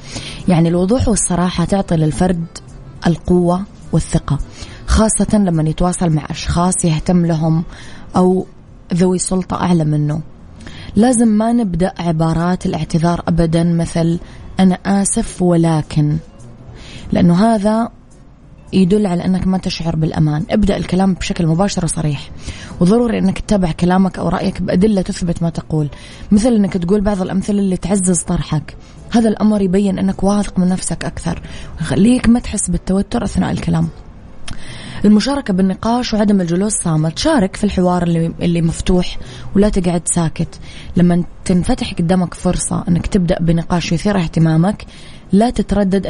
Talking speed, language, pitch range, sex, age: 130 wpm, Arabic, 165-190 Hz, female, 20-39